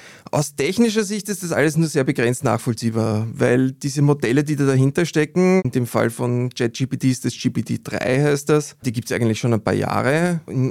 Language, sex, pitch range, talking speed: German, male, 115-140 Hz, 200 wpm